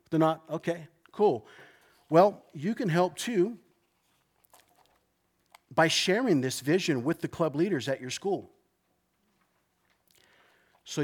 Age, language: 50-69, English